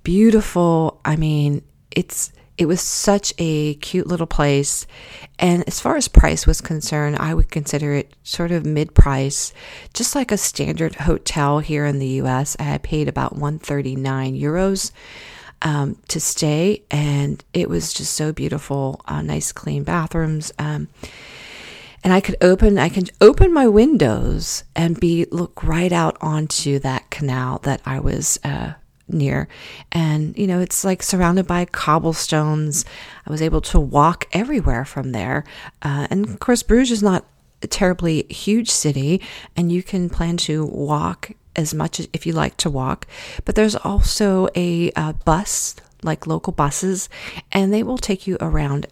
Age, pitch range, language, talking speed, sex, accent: 40-59, 145-180 Hz, English, 160 wpm, female, American